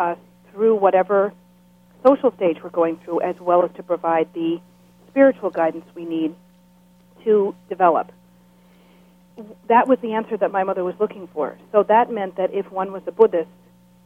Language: English